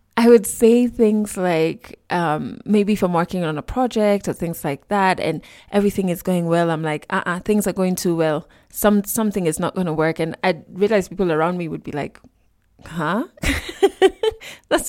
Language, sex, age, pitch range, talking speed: English, female, 20-39, 175-225 Hz, 195 wpm